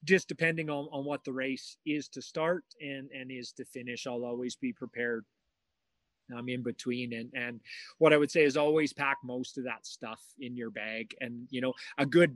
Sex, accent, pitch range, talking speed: male, American, 125-150 Hz, 215 wpm